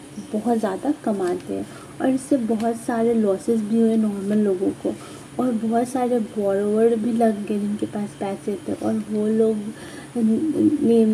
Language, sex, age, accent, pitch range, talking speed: Hindi, female, 30-49, native, 210-245 Hz, 155 wpm